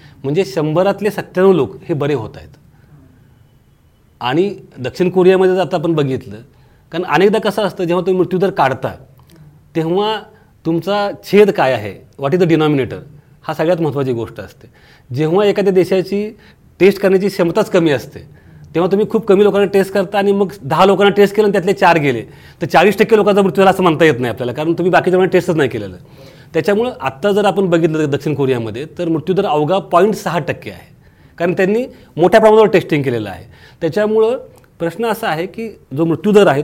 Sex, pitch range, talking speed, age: male, 140-195 Hz, 180 wpm, 40-59